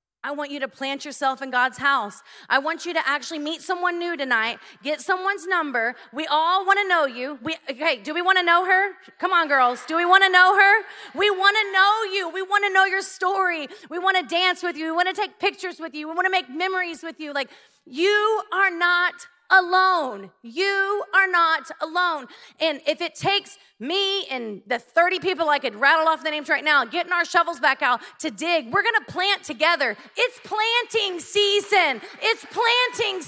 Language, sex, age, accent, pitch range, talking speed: English, female, 30-49, American, 295-385 Hz, 215 wpm